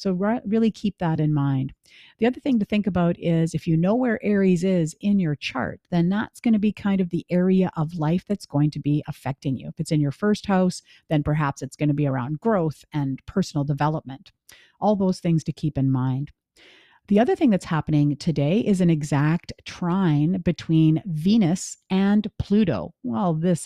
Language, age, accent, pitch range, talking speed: English, 50-69, American, 155-200 Hz, 200 wpm